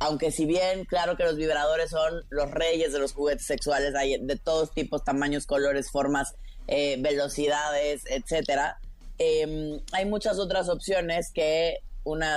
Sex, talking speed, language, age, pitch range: female, 150 wpm, Spanish, 20-39, 145-165 Hz